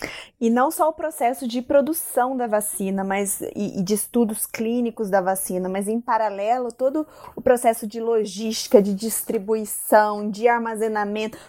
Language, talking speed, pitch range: Portuguese, 150 wpm, 220-280 Hz